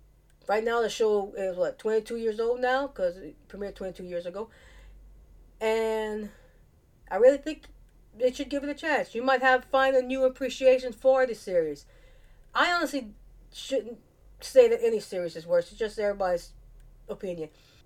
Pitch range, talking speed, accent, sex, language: 180-260 Hz, 165 wpm, American, female, English